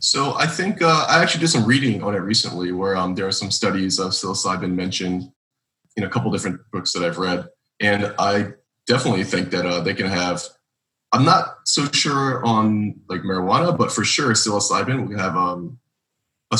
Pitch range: 90-120 Hz